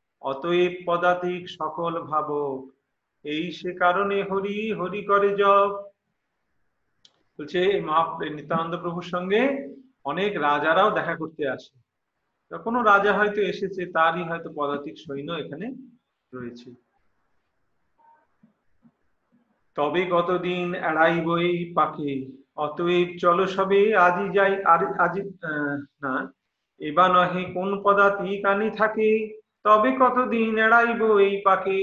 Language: Hindi